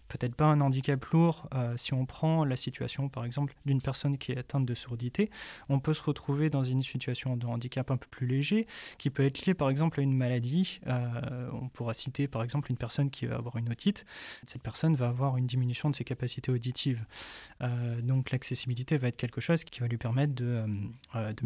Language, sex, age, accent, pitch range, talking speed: French, male, 20-39, French, 125-150 Hz, 220 wpm